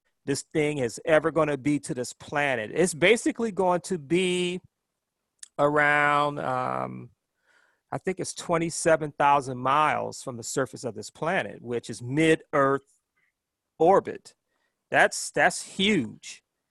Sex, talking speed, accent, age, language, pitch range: male, 125 wpm, American, 40-59, English, 140-185 Hz